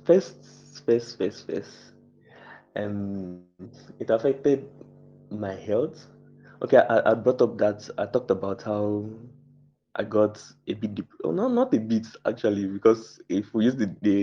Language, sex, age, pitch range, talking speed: English, male, 20-39, 100-115 Hz, 145 wpm